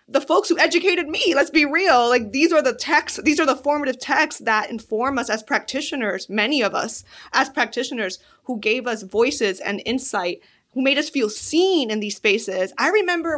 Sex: female